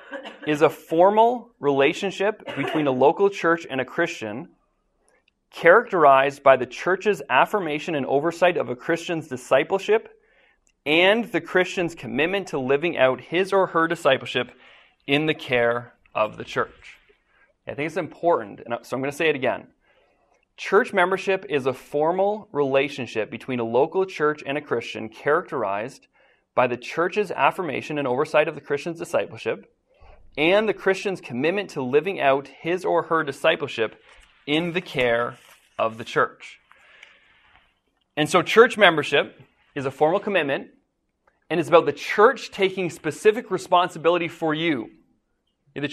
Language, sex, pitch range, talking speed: English, male, 140-190 Hz, 145 wpm